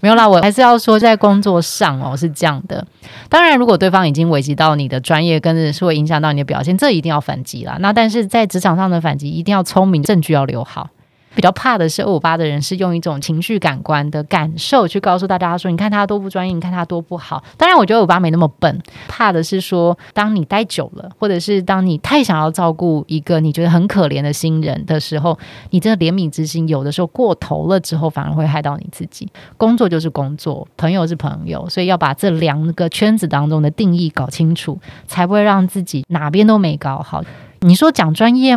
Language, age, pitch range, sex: Chinese, 20-39, 155-200 Hz, female